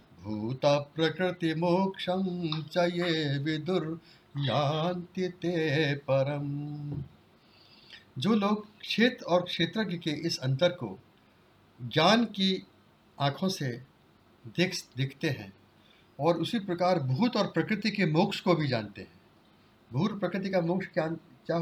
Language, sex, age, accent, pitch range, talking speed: Hindi, male, 50-69, native, 130-180 Hz, 105 wpm